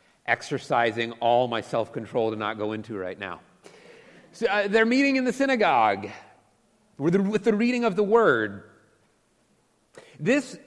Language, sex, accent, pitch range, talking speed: English, male, American, 150-220 Hz, 150 wpm